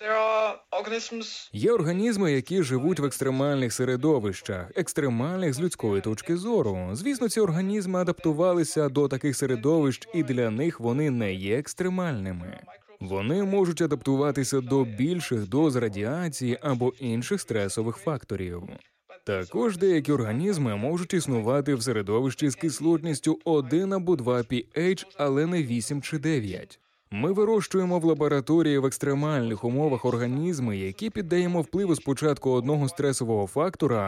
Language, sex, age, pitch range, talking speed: Ukrainian, male, 20-39, 125-170 Hz, 125 wpm